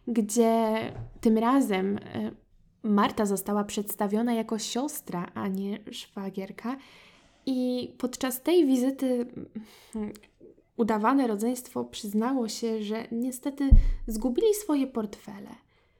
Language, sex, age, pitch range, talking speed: Polish, female, 10-29, 215-265 Hz, 90 wpm